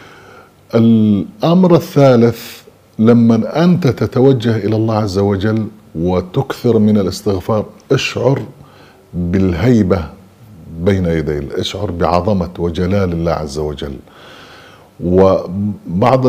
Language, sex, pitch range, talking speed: Arabic, male, 90-110 Hz, 85 wpm